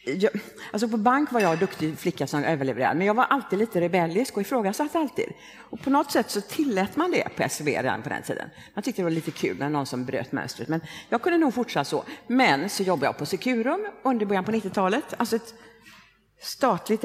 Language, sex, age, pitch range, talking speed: Swedish, female, 50-69, 155-235 Hz, 220 wpm